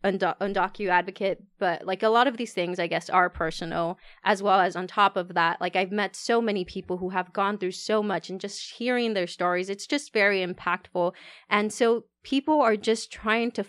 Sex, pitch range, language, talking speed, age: female, 180-210 Hz, English, 205 wpm, 20-39